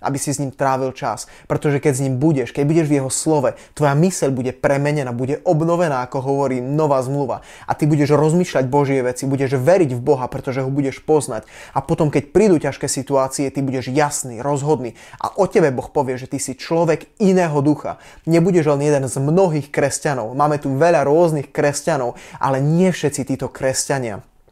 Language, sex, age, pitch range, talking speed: Slovak, male, 20-39, 135-155 Hz, 190 wpm